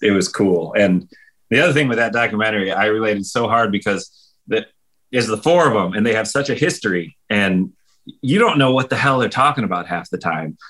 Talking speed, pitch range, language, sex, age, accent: 225 wpm, 95-115 Hz, English, male, 30-49, American